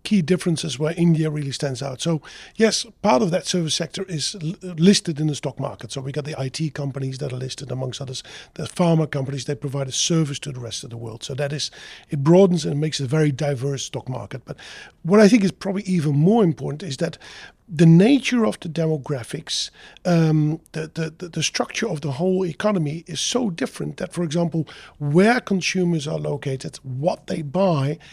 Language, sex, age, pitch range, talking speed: English, male, 50-69, 145-185 Hz, 200 wpm